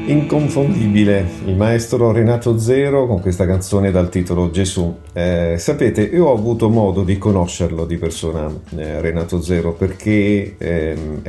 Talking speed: 140 wpm